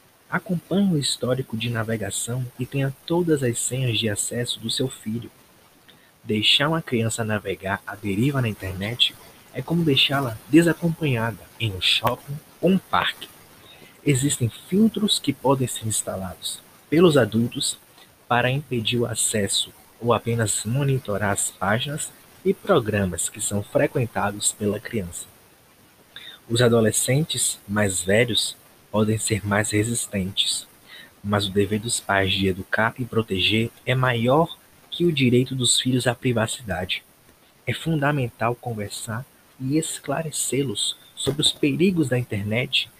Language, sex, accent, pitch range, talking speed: Portuguese, male, Brazilian, 110-140 Hz, 130 wpm